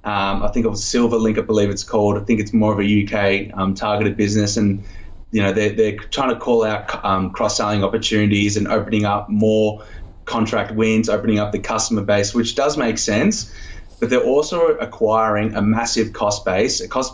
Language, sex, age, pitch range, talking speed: English, male, 20-39, 100-115 Hz, 205 wpm